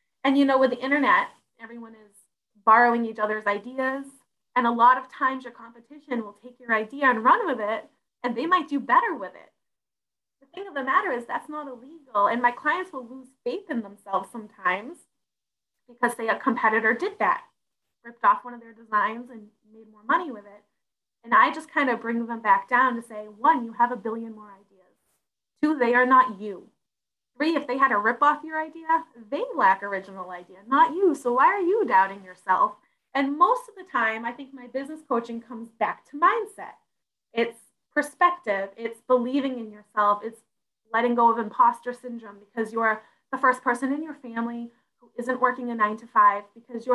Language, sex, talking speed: English, female, 200 wpm